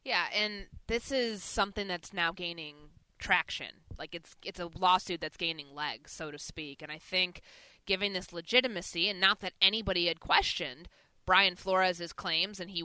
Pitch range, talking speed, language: 165-195 Hz, 175 wpm, English